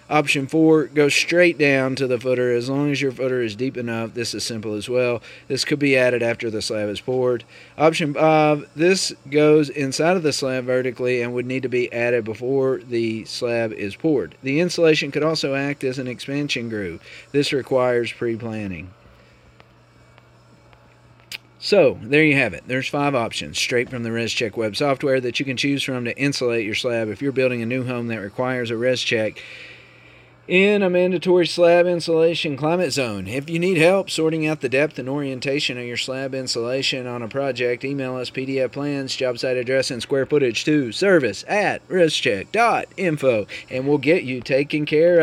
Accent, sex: American, male